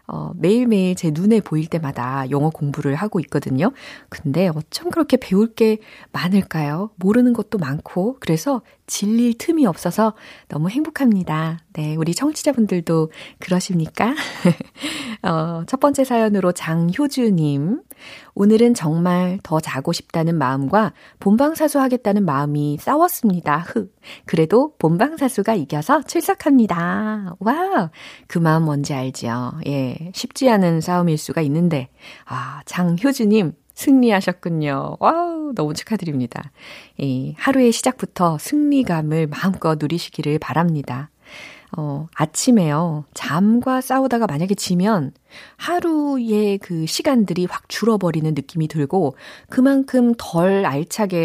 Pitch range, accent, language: 155-235 Hz, native, Korean